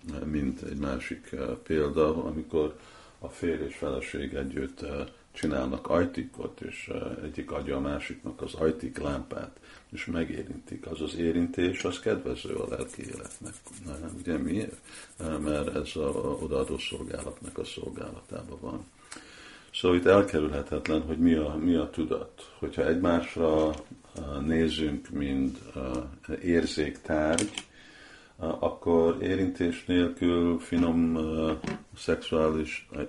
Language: Hungarian